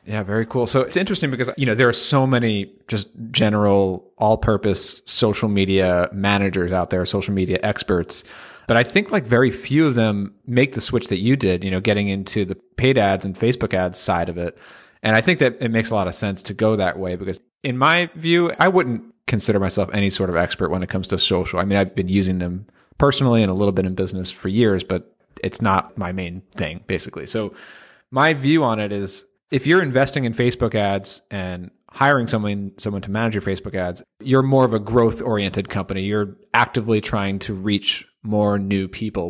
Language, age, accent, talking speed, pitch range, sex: English, 30-49, American, 215 wpm, 100-125 Hz, male